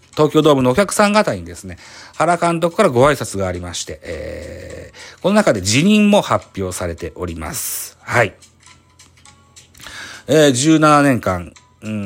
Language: Japanese